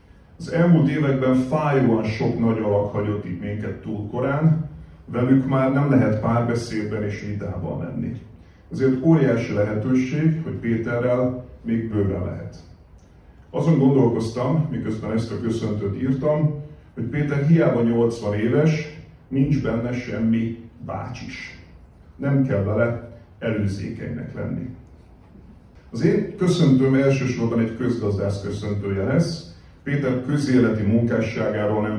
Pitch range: 100-130 Hz